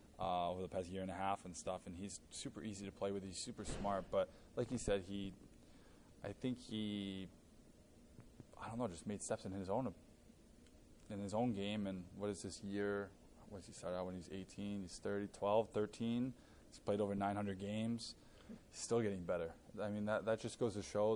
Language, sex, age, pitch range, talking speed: English, male, 20-39, 95-110 Hz, 205 wpm